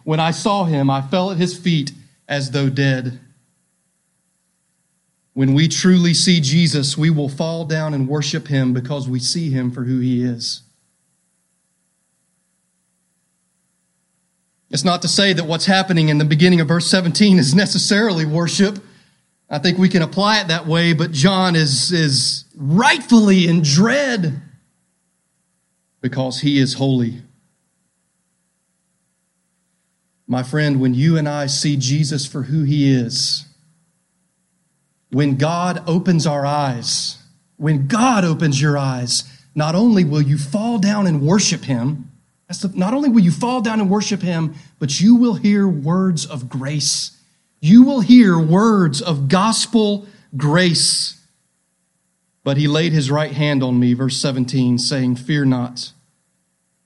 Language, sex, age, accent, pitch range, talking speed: English, male, 30-49, American, 135-180 Hz, 140 wpm